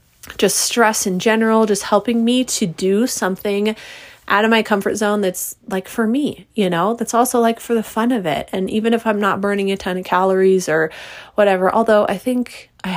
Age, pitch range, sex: 30-49, 180-225 Hz, female